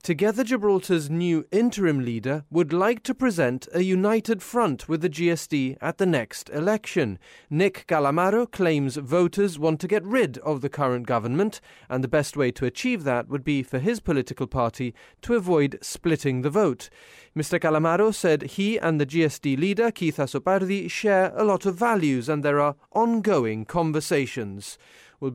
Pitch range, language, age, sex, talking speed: 140-195 Hz, English, 30-49, male, 165 wpm